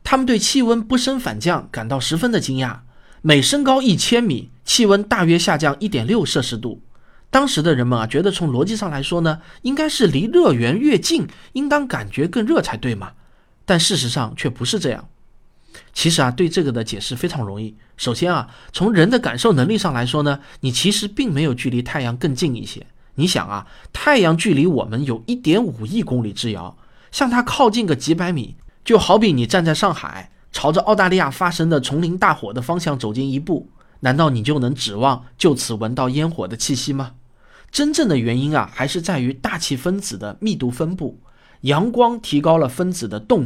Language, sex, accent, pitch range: Chinese, male, native, 125-190 Hz